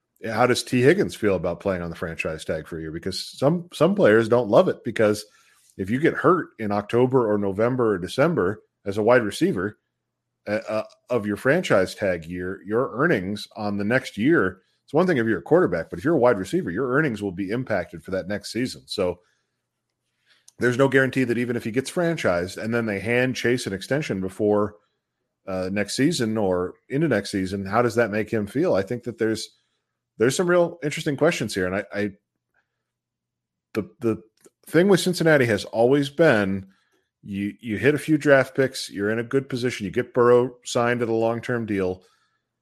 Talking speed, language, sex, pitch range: 205 wpm, English, male, 100-130 Hz